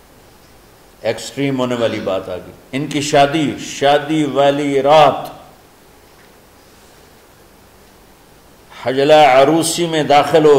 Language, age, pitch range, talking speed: Urdu, 50-69, 105-130 Hz, 90 wpm